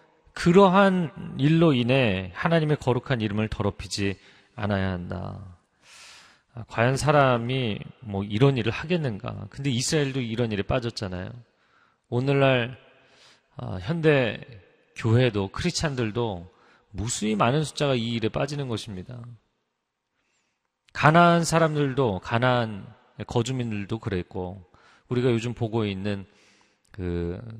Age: 40-59